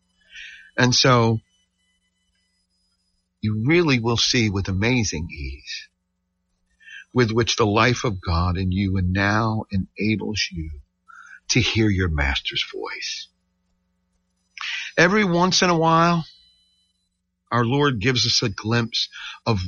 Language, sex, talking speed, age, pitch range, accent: English, male, 115 wpm, 50-69, 90-145 Hz, American